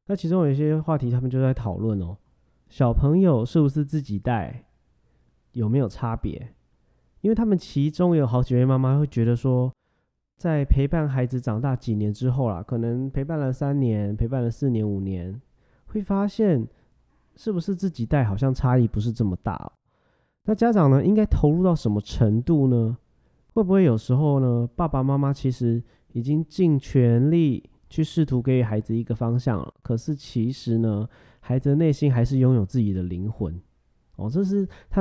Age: 30-49